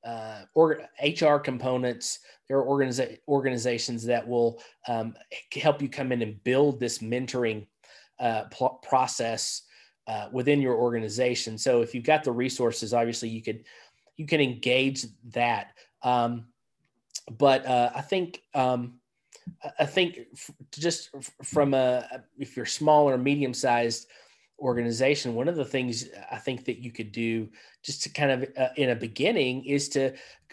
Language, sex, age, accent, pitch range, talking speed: English, male, 20-39, American, 120-140 Hz, 140 wpm